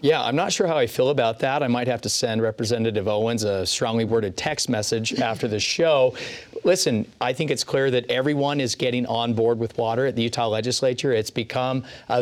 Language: English